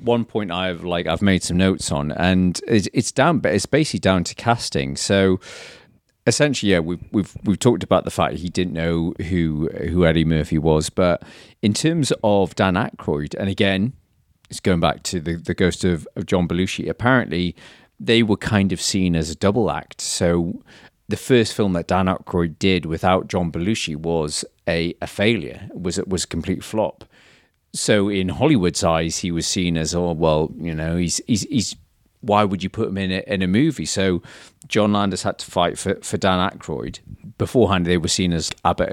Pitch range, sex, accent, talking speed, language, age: 85-100 Hz, male, British, 200 wpm, English, 40-59